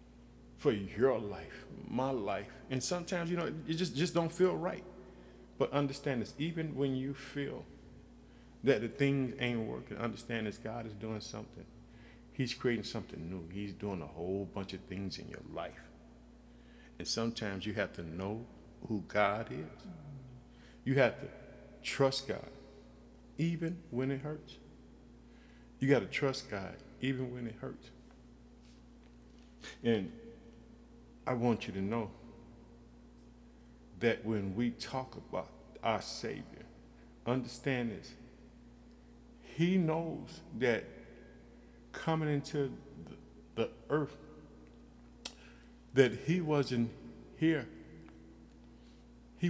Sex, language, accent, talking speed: male, English, American, 125 wpm